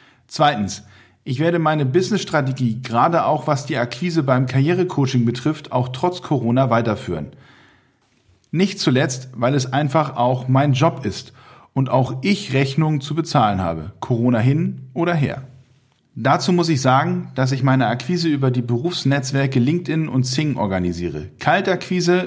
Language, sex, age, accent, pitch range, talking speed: German, male, 40-59, German, 125-155 Hz, 145 wpm